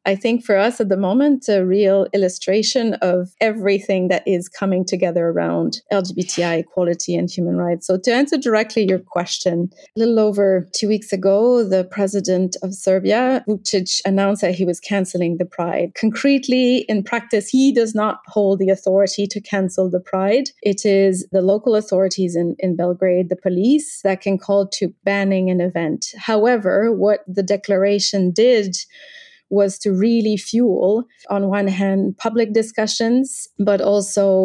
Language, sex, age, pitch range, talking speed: English, female, 30-49, 185-215 Hz, 160 wpm